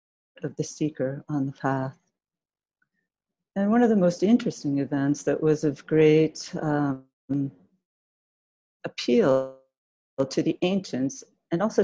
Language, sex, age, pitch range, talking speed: English, female, 40-59, 140-170 Hz, 120 wpm